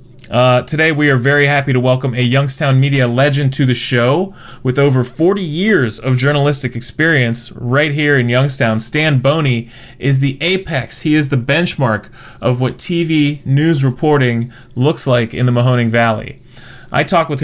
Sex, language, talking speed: male, English, 170 wpm